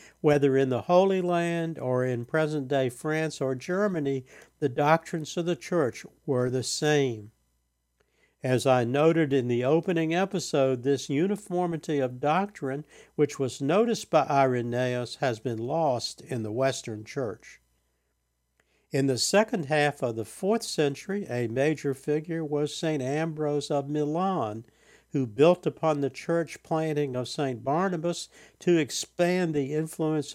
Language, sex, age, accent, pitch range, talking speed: English, male, 60-79, American, 125-160 Hz, 140 wpm